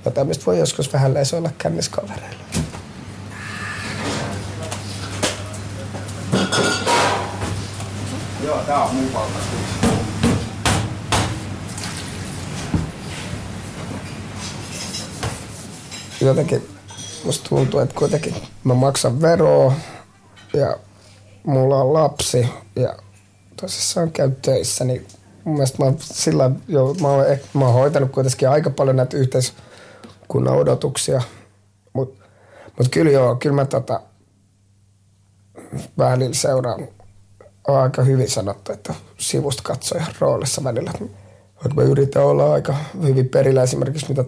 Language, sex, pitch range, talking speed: Finnish, male, 100-135 Hz, 90 wpm